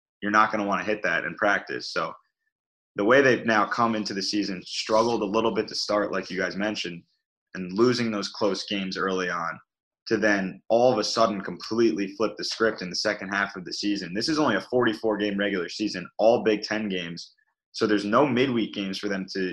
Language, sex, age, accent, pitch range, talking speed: English, male, 20-39, American, 95-110 Hz, 220 wpm